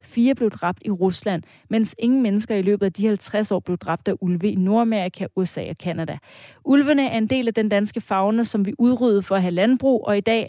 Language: Danish